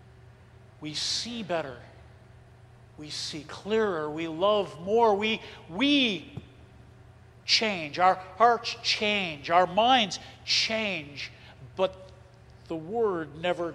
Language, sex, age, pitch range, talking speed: English, male, 50-69, 120-180 Hz, 95 wpm